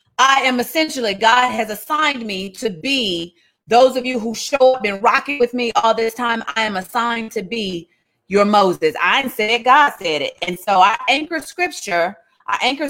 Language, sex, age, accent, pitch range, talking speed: English, female, 30-49, American, 185-260 Hz, 200 wpm